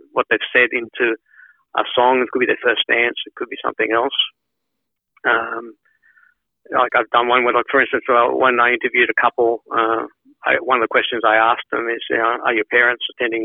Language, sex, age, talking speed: English, male, 50-69, 210 wpm